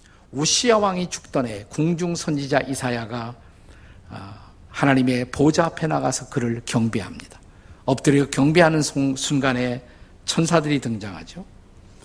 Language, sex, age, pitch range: Korean, male, 50-69, 105-155 Hz